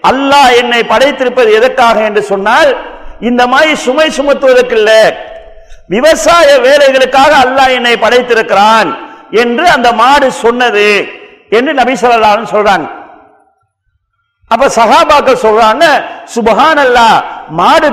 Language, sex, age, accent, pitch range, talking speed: Tamil, male, 50-69, native, 225-290 Hz, 95 wpm